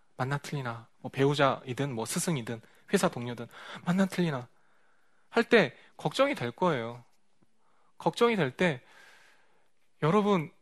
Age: 20-39